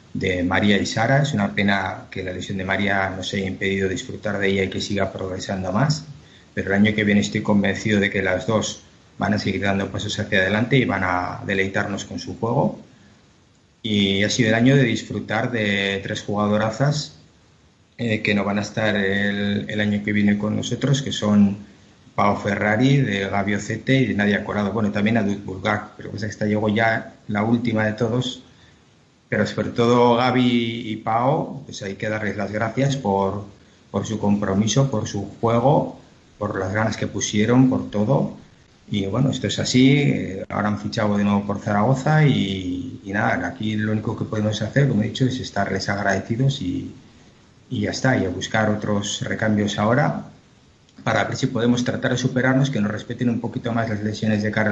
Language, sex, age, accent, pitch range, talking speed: Spanish, male, 30-49, Spanish, 100-120 Hz, 195 wpm